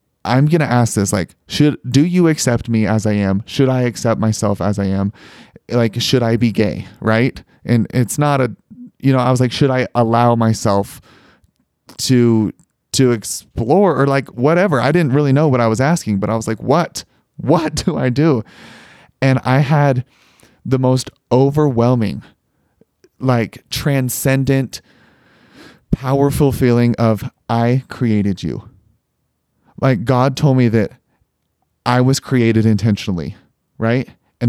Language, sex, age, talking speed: English, male, 30-49, 155 wpm